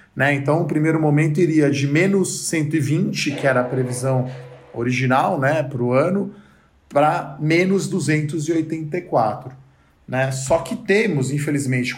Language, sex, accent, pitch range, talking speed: Portuguese, male, Brazilian, 125-150 Hz, 130 wpm